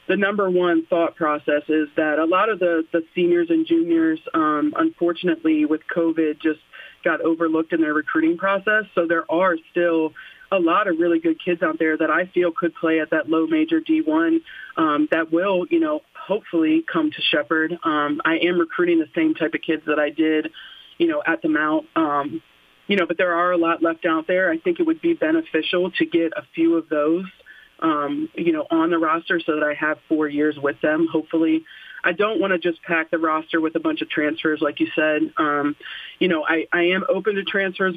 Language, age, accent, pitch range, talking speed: English, 40-59, American, 155-220 Hz, 215 wpm